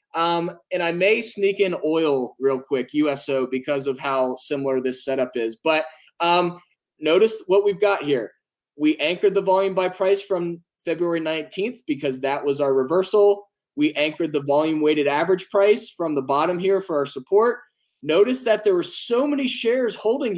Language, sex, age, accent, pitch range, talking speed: English, male, 20-39, American, 155-220 Hz, 175 wpm